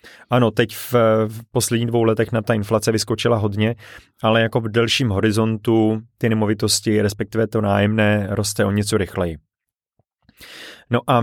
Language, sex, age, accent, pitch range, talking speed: Czech, male, 30-49, native, 105-120 Hz, 150 wpm